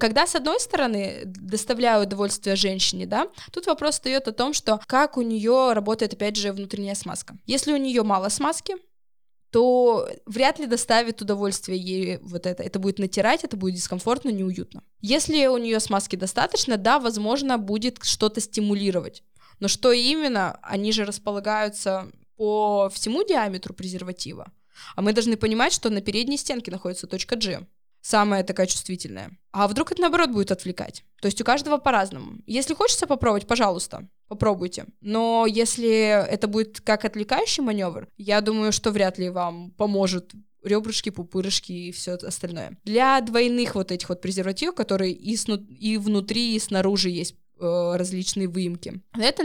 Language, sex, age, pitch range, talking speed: Russian, female, 20-39, 195-240 Hz, 155 wpm